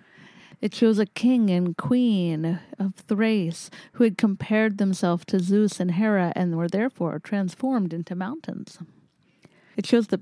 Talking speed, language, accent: 145 wpm, English, American